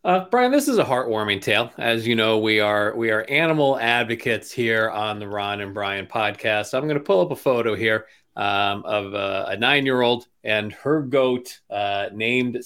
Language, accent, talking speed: English, American, 200 wpm